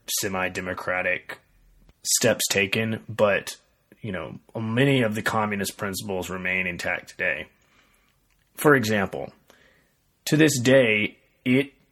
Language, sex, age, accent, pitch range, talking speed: English, male, 30-49, American, 100-120 Hz, 100 wpm